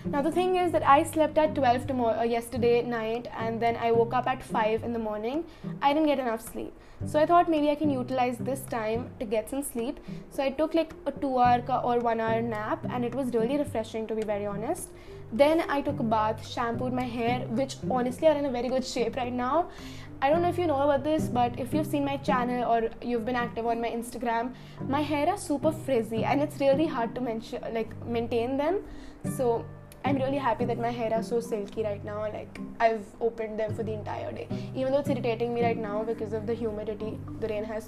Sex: female